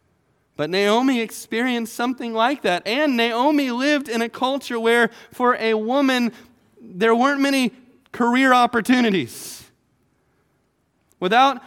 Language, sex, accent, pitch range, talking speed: English, male, American, 195-245 Hz, 115 wpm